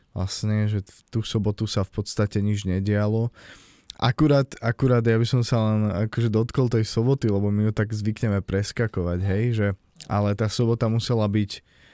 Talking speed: 165 wpm